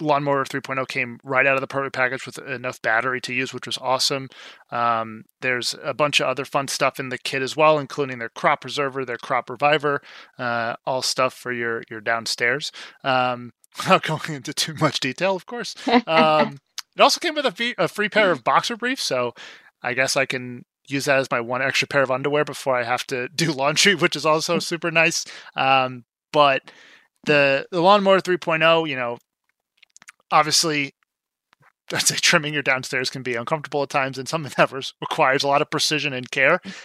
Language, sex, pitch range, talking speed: English, male, 130-160 Hz, 195 wpm